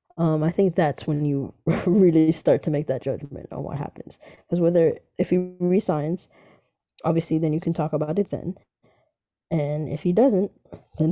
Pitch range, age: 150-175 Hz, 20-39